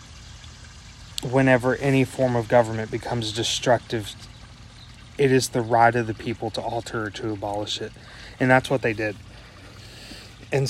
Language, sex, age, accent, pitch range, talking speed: English, male, 20-39, American, 110-120 Hz, 145 wpm